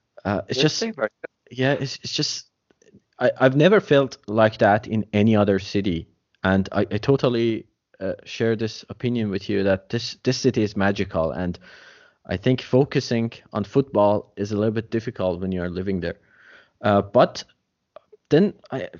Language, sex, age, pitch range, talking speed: Persian, male, 20-39, 105-135 Hz, 165 wpm